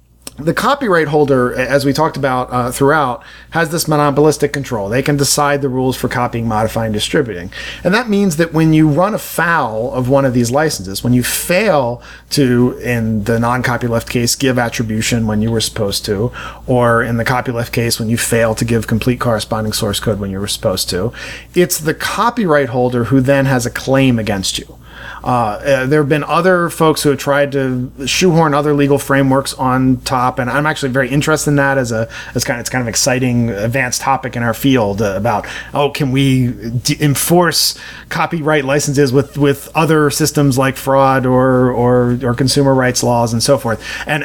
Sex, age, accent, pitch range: male, 40-59, American, 120-150 Hz